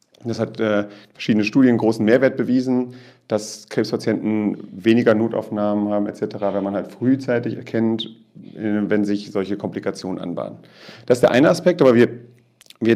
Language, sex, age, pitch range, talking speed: German, male, 40-59, 105-130 Hz, 155 wpm